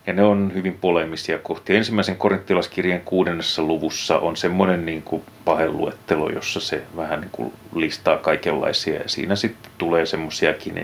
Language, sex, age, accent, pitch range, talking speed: Finnish, male, 30-49, native, 85-105 Hz, 140 wpm